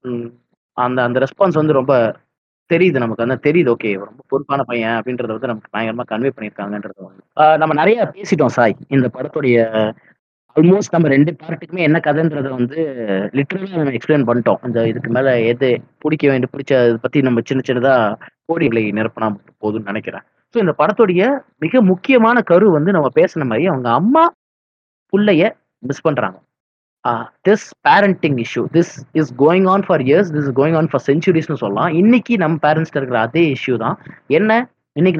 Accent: native